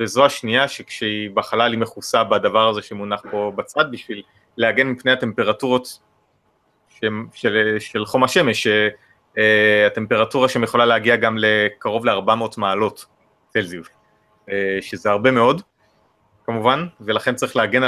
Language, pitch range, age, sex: Hebrew, 110-135 Hz, 30-49, male